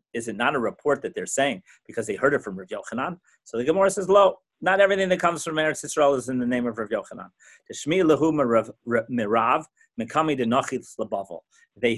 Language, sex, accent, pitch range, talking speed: English, male, American, 115-145 Hz, 180 wpm